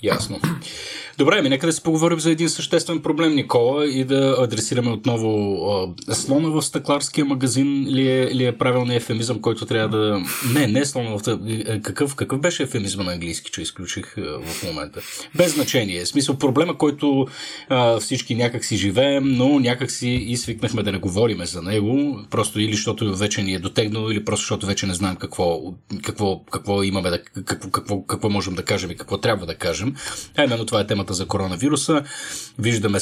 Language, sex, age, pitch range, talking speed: Bulgarian, male, 30-49, 100-130 Hz, 185 wpm